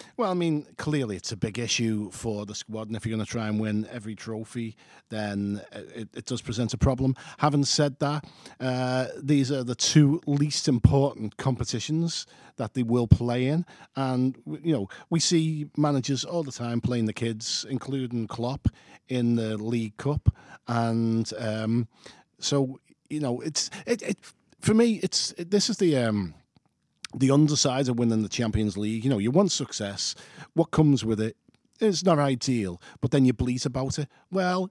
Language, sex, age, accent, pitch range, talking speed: English, male, 40-59, British, 110-150 Hz, 180 wpm